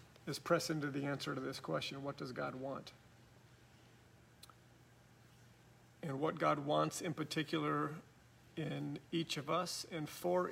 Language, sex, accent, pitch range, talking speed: English, male, American, 120-160 Hz, 135 wpm